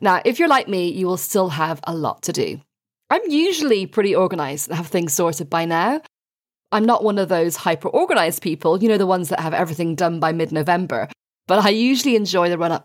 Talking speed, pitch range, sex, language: 215 wpm, 165-230 Hz, female, English